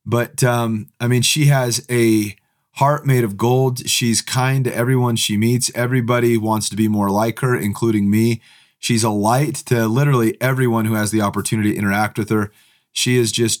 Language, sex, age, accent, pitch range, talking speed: English, male, 30-49, American, 110-125 Hz, 190 wpm